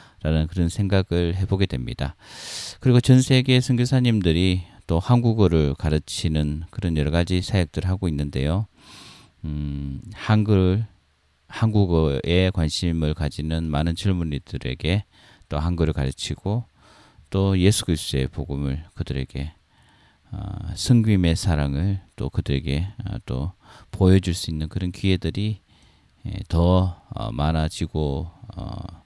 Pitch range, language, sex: 80-105 Hz, Korean, male